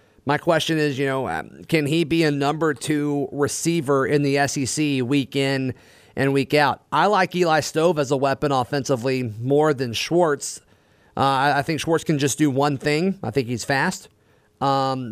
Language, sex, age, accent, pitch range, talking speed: English, male, 30-49, American, 135-160 Hz, 180 wpm